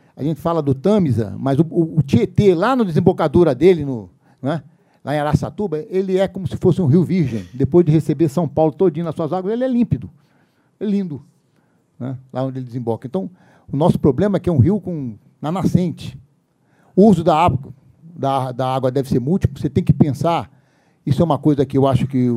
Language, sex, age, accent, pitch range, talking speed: Portuguese, male, 60-79, Brazilian, 130-175 Hz, 215 wpm